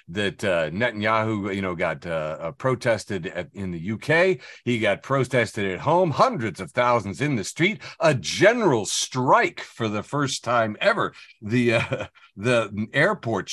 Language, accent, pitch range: English, American, 95-140 Hz